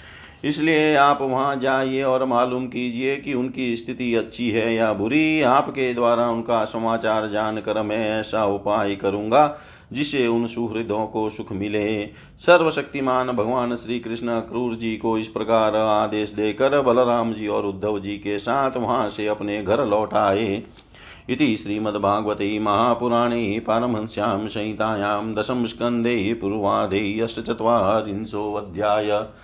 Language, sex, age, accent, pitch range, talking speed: Hindi, male, 50-69, native, 105-125 Hz, 130 wpm